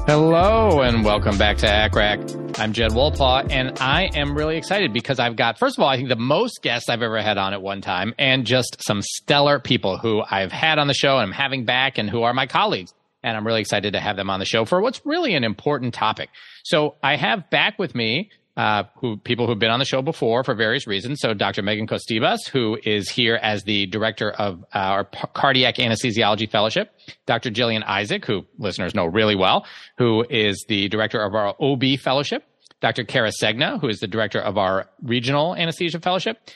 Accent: American